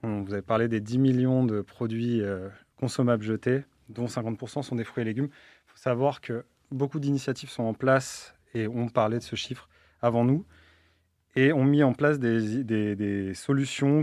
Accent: French